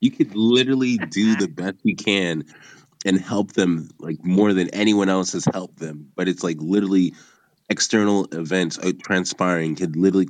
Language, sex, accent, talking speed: English, male, American, 170 wpm